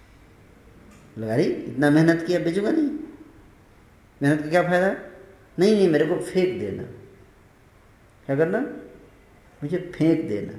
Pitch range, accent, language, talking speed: 110-170 Hz, native, Hindi, 120 wpm